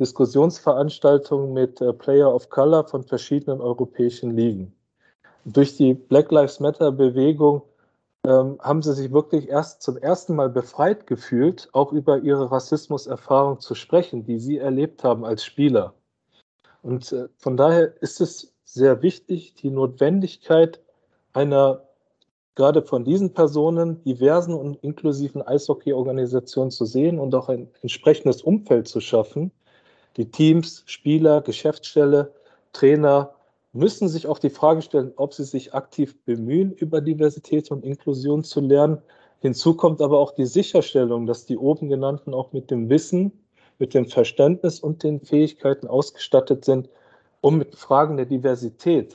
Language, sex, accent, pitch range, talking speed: German, male, German, 130-155 Hz, 145 wpm